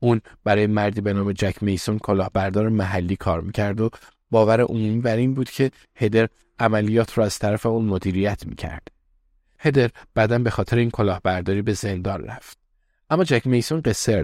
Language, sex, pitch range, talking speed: Persian, male, 100-120 Hz, 160 wpm